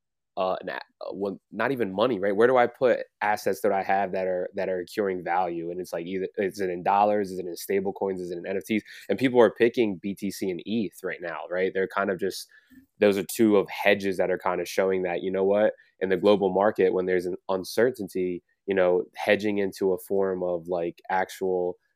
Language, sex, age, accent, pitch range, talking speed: English, male, 20-39, American, 95-115 Hz, 220 wpm